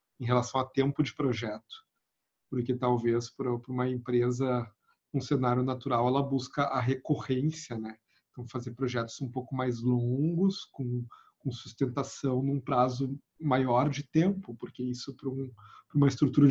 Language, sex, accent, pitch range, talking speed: Portuguese, male, Brazilian, 125-145 Hz, 140 wpm